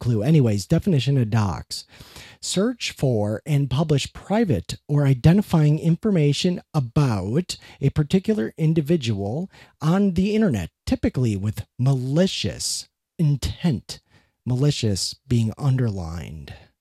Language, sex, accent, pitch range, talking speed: English, male, American, 110-145 Hz, 95 wpm